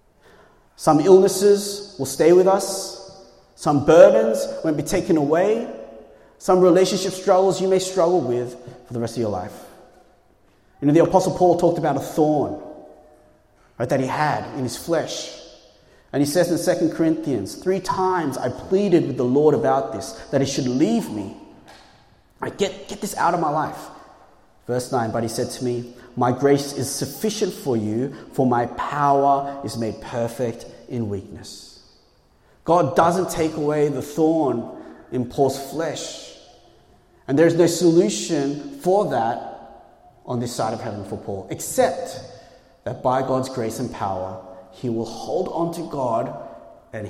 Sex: male